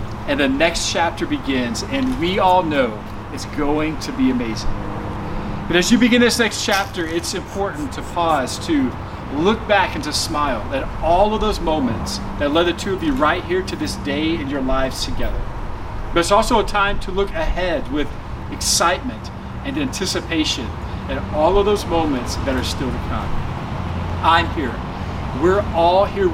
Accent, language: American, English